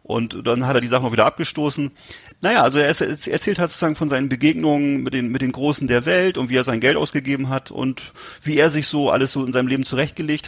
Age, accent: 40-59, German